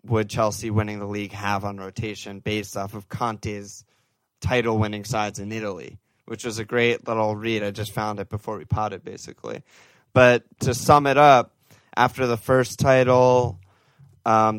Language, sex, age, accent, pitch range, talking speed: English, male, 20-39, American, 105-125 Hz, 165 wpm